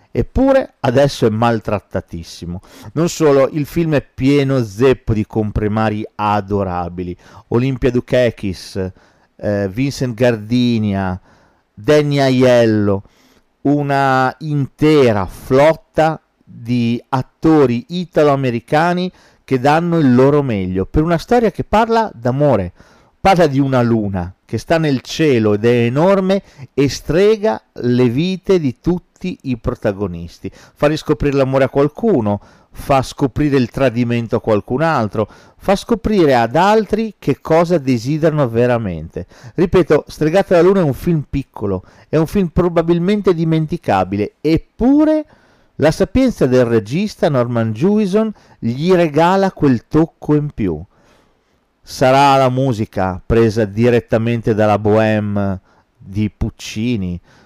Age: 40-59